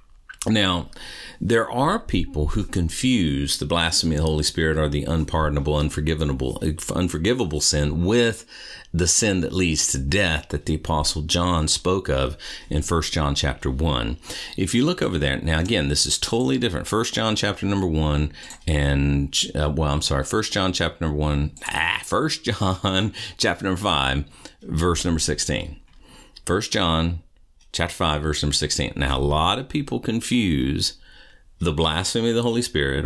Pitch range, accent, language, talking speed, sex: 75-95 Hz, American, English, 165 wpm, male